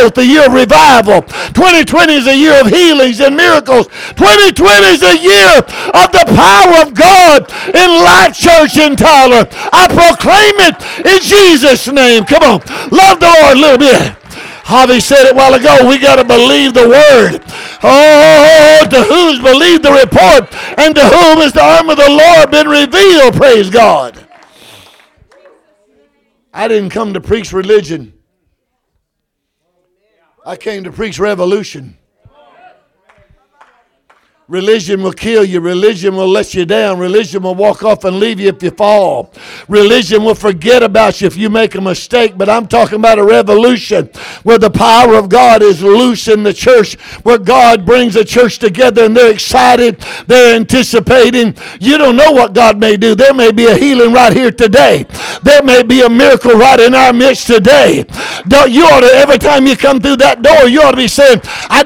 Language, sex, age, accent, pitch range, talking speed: English, male, 50-69, American, 220-290 Hz, 175 wpm